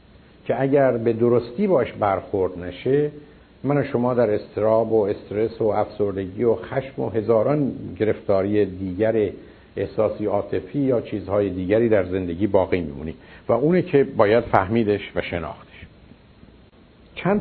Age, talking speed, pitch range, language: 50-69, 130 wpm, 95-130 Hz, Persian